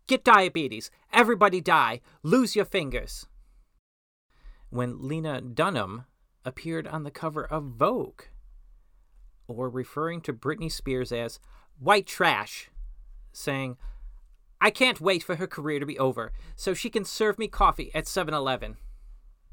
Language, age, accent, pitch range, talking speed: English, 40-59, American, 105-155 Hz, 130 wpm